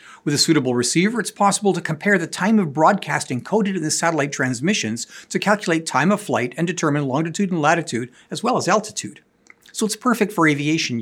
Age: 50-69